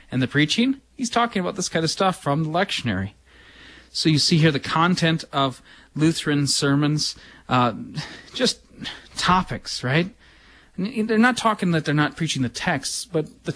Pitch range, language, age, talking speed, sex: 120-160 Hz, English, 30-49, 170 wpm, male